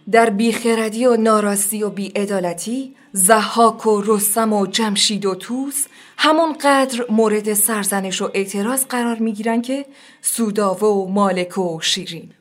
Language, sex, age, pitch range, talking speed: Persian, female, 20-39, 210-270 Hz, 125 wpm